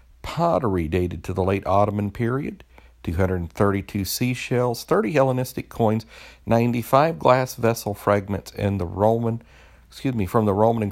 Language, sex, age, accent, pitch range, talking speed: English, male, 50-69, American, 90-120 Hz, 155 wpm